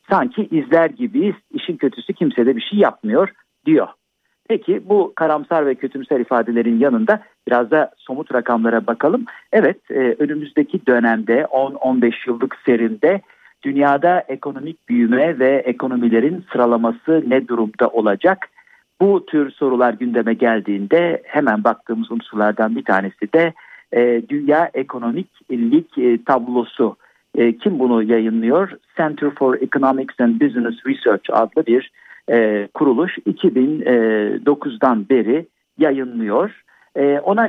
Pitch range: 120-160 Hz